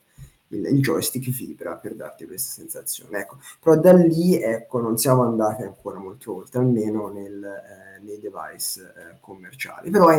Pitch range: 110-135 Hz